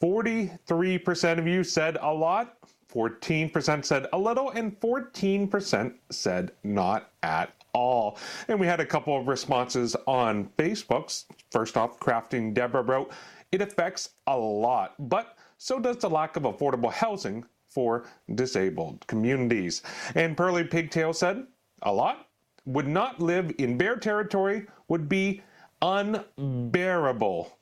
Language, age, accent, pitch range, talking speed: English, 40-59, American, 120-175 Hz, 130 wpm